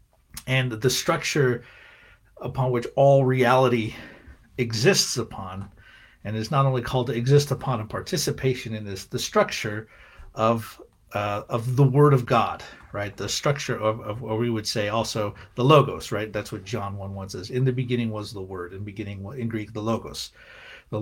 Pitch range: 105-130 Hz